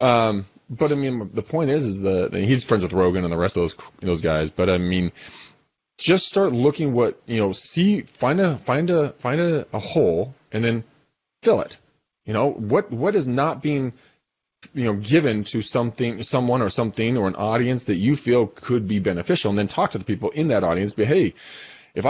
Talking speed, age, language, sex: 215 wpm, 30-49, English, male